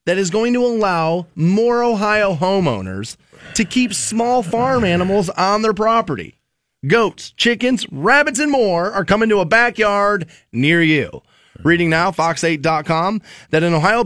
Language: English